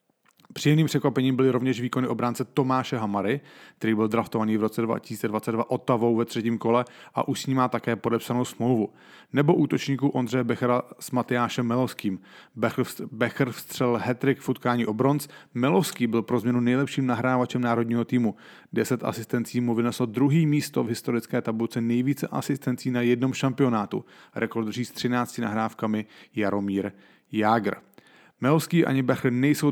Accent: Czech